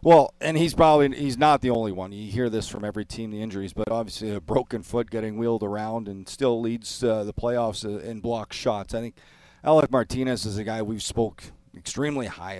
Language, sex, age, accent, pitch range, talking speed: English, male, 40-59, American, 105-130 Hz, 215 wpm